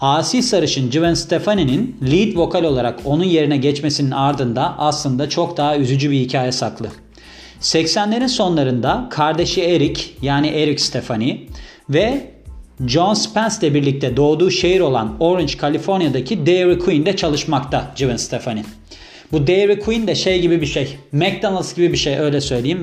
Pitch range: 130-180 Hz